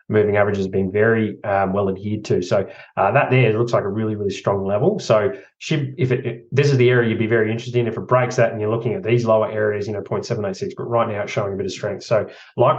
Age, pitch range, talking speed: 20-39, 110-130 Hz, 270 wpm